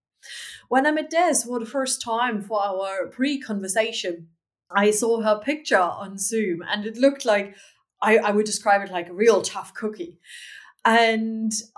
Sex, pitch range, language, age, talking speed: female, 210-260 Hz, English, 30-49, 165 wpm